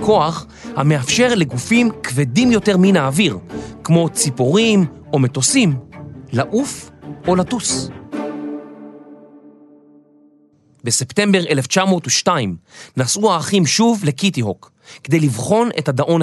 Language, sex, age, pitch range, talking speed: Hebrew, male, 30-49, 130-200 Hz, 90 wpm